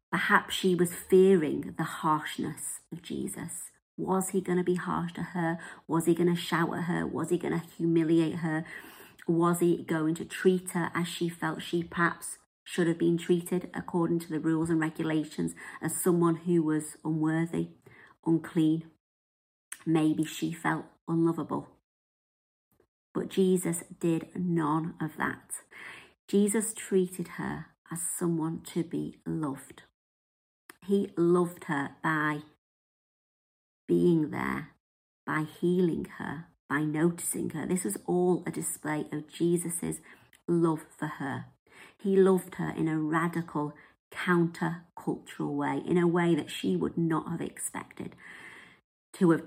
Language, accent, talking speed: English, British, 140 wpm